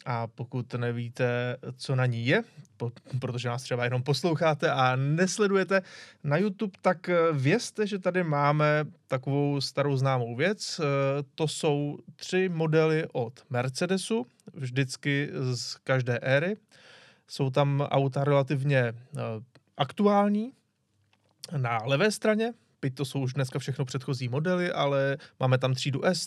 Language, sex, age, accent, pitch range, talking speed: Czech, male, 20-39, native, 130-170 Hz, 130 wpm